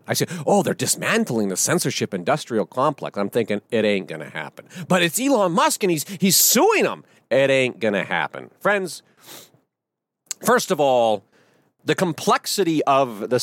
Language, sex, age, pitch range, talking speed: English, male, 40-59, 125-165 Hz, 170 wpm